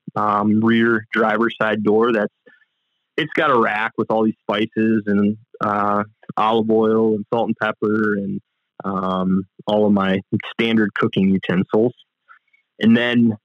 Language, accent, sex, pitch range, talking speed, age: English, American, male, 105-120 Hz, 145 wpm, 20-39